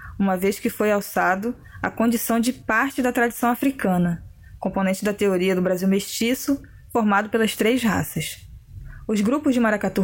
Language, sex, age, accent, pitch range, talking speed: Portuguese, female, 20-39, Brazilian, 190-240 Hz, 155 wpm